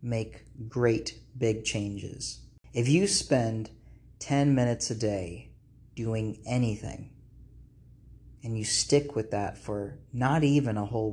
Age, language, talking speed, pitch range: 30-49, English, 125 wpm, 110-130 Hz